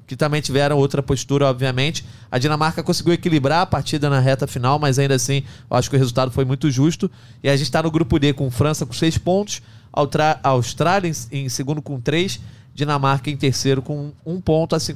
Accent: Brazilian